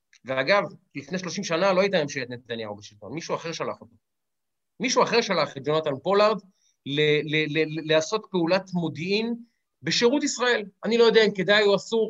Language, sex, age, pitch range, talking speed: Hebrew, male, 30-49, 165-215 Hz, 175 wpm